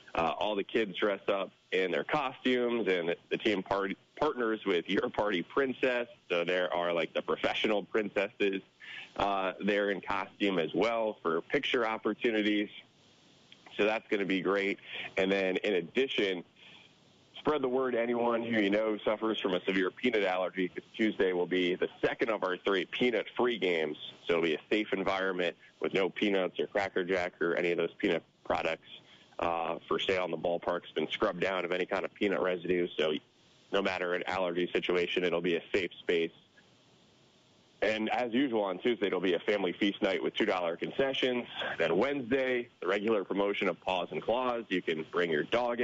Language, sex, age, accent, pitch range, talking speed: English, male, 30-49, American, 90-115 Hz, 185 wpm